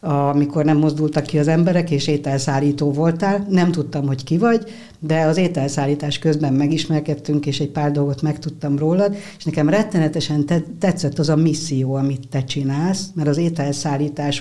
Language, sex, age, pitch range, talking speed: Hungarian, female, 60-79, 135-160 Hz, 160 wpm